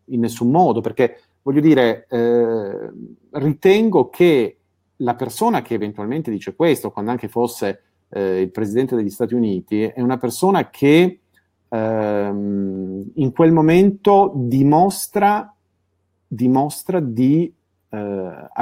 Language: Italian